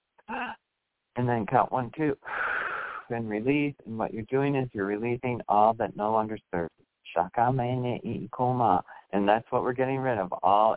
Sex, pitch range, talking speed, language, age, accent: male, 110-150 Hz, 150 wpm, English, 40-59, American